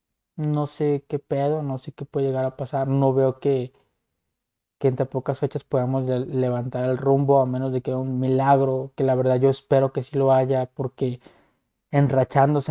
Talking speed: 195 wpm